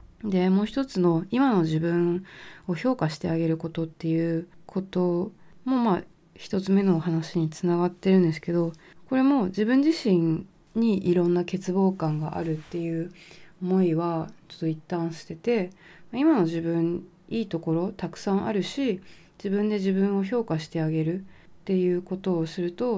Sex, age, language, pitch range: female, 20-39, Japanese, 165-210 Hz